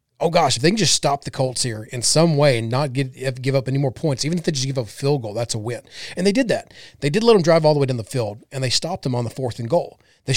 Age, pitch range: 30-49, 120-150 Hz